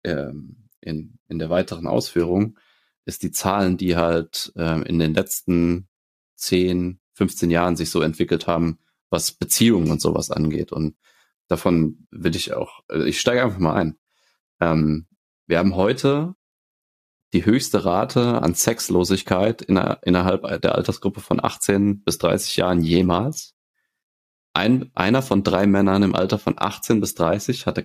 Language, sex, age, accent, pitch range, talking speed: German, male, 30-49, German, 85-105 Hz, 145 wpm